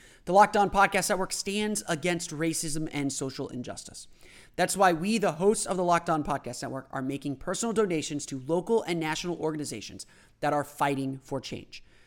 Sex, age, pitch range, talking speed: male, 30-49, 145-205 Hz, 180 wpm